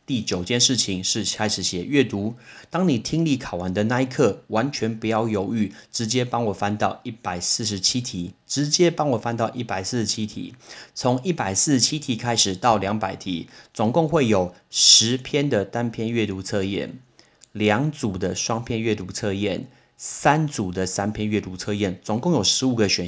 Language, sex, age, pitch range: Chinese, male, 30-49, 100-130 Hz